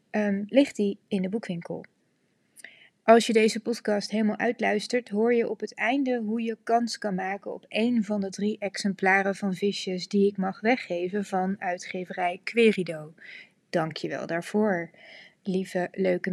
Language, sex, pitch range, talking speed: Dutch, female, 190-235 Hz, 155 wpm